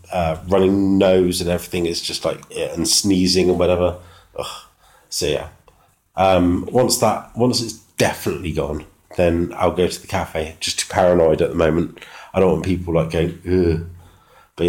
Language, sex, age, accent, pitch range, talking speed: English, male, 30-49, British, 90-110 Hz, 170 wpm